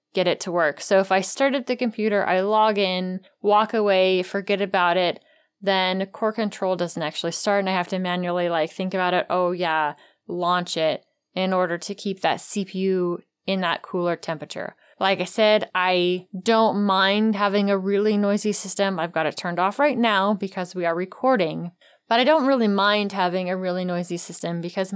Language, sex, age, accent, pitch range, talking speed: English, female, 20-39, American, 170-200 Hz, 195 wpm